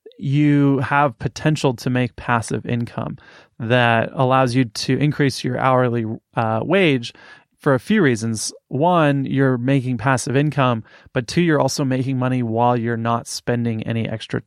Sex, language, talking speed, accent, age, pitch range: male, English, 155 wpm, American, 20-39, 120-135 Hz